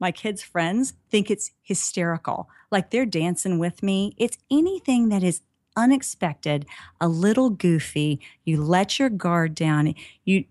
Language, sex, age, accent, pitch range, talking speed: English, female, 40-59, American, 165-230 Hz, 145 wpm